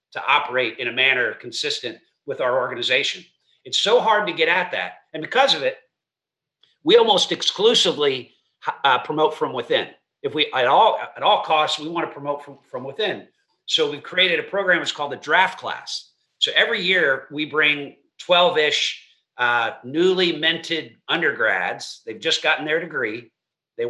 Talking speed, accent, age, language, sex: 165 wpm, American, 50-69, English, male